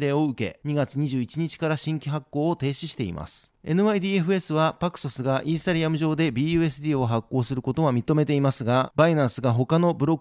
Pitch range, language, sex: 135-160 Hz, Japanese, male